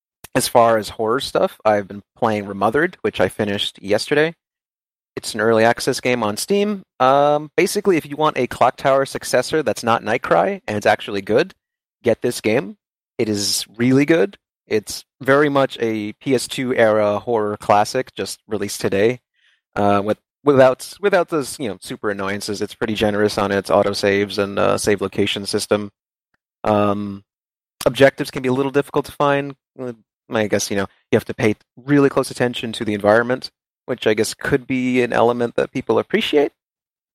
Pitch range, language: 105-130 Hz, English